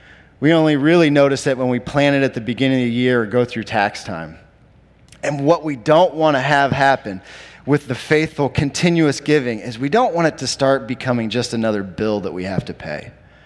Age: 30-49